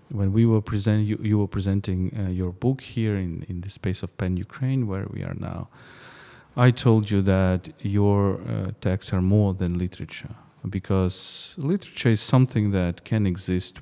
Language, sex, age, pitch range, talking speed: English, male, 40-59, 90-115 Hz, 180 wpm